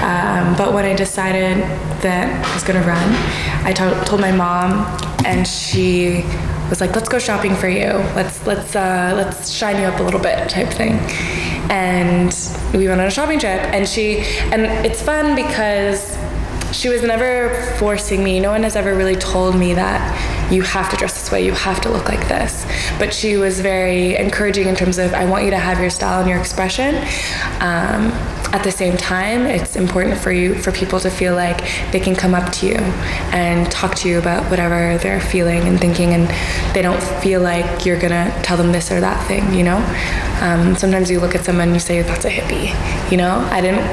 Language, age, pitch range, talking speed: English, 20-39, 175-195 Hz, 210 wpm